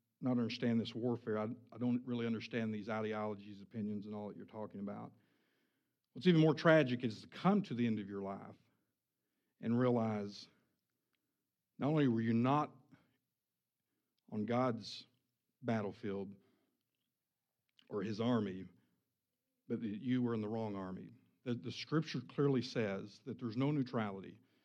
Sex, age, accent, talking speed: male, 50-69, American, 150 wpm